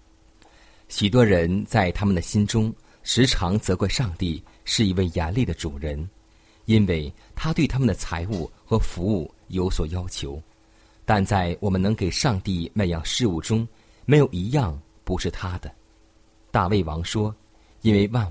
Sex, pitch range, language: male, 85-110 Hz, Chinese